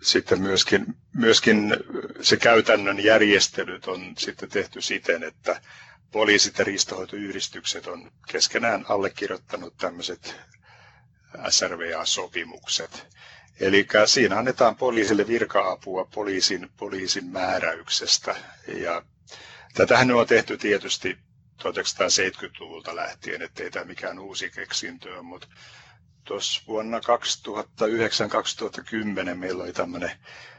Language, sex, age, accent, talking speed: Finnish, male, 60-79, native, 90 wpm